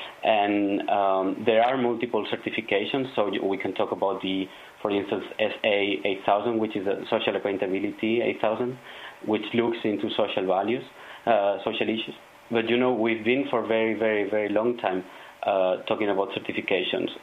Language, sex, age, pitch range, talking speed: German, male, 30-49, 100-115 Hz, 155 wpm